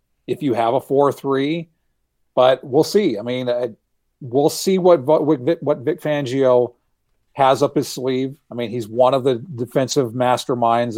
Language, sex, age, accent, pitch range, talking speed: English, male, 40-59, American, 115-140 Hz, 165 wpm